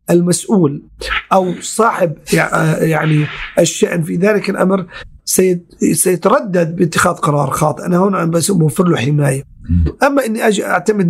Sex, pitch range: male, 155-200 Hz